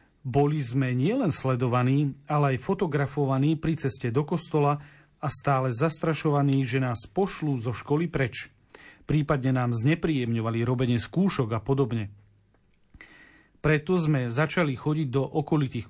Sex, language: male, Slovak